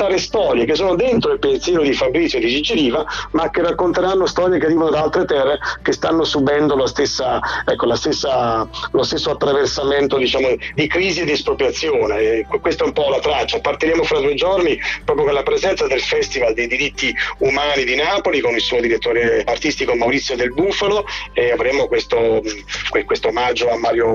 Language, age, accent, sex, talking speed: Italian, 40-59, native, male, 185 wpm